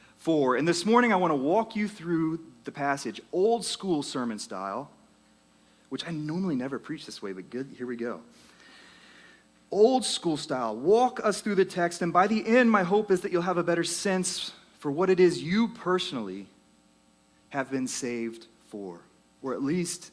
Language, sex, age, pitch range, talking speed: English, male, 30-49, 125-190 Hz, 185 wpm